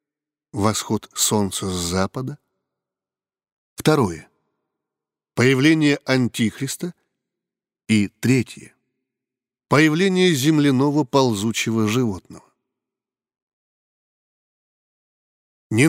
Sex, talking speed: male, 55 wpm